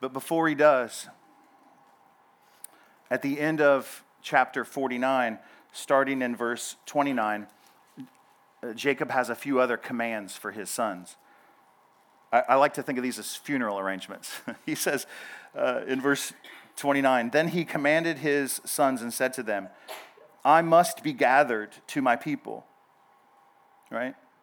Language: English